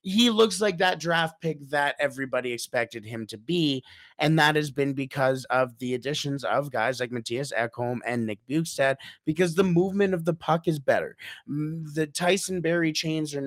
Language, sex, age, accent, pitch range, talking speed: English, male, 30-49, American, 130-160 Hz, 185 wpm